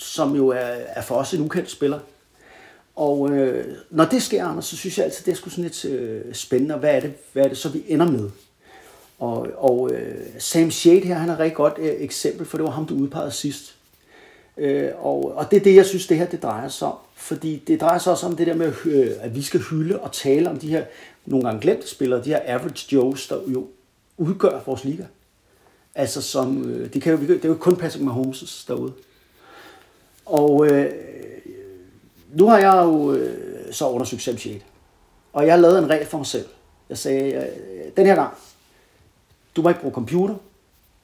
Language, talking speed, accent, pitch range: Danish, 210 wpm, native, 135-175 Hz